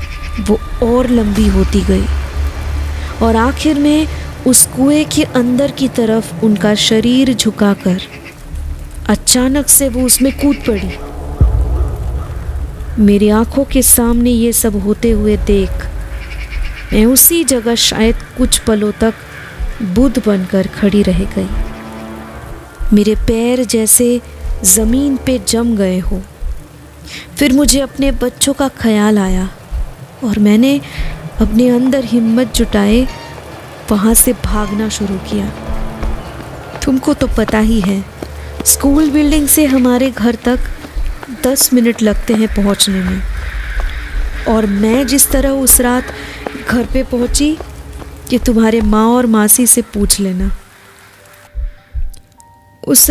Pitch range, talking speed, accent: 185-255 Hz, 120 wpm, native